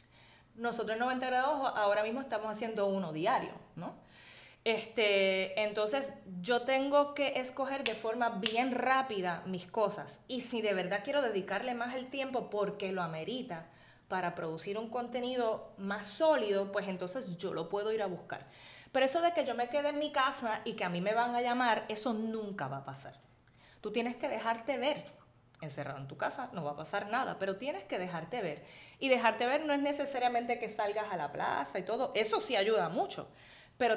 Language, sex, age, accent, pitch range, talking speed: Spanish, female, 20-39, American, 190-240 Hz, 195 wpm